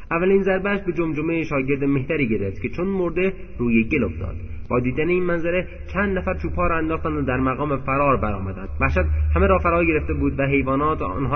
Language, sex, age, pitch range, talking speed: Persian, male, 30-49, 115-155 Hz, 190 wpm